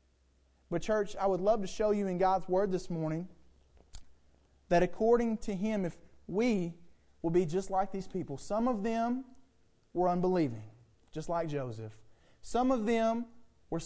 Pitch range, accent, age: 140-195 Hz, American, 20-39